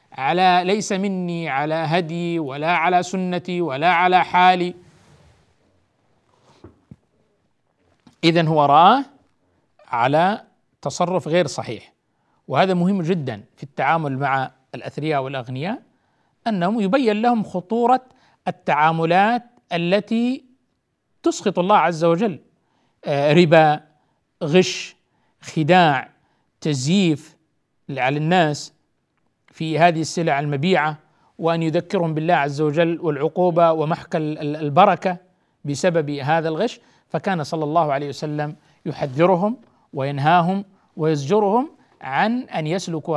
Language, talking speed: Arabic, 95 wpm